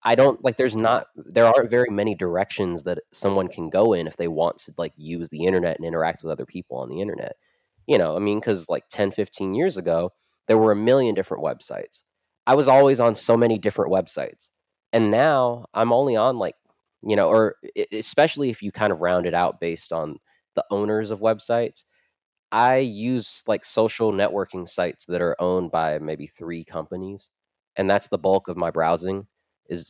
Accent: American